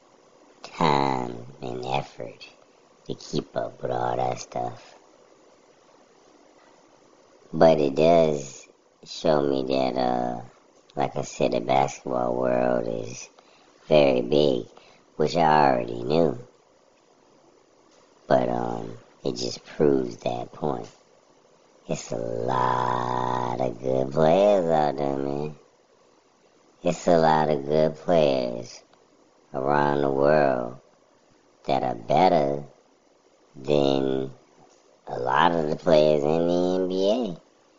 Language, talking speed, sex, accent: English, 105 wpm, male, American